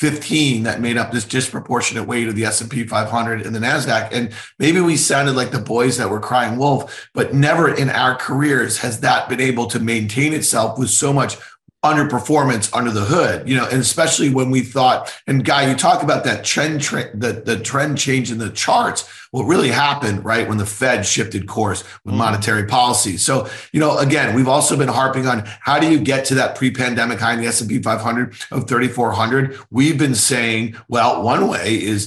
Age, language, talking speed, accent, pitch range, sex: 30-49, English, 200 wpm, American, 110-130 Hz, male